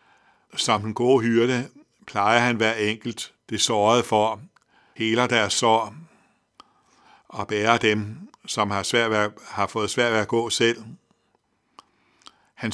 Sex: male